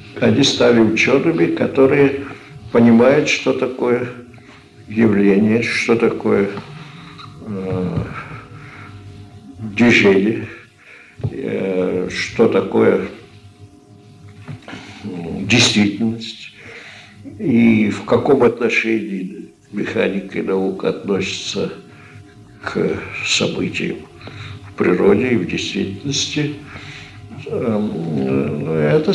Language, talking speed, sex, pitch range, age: Russian, 60 wpm, male, 100-130 Hz, 60-79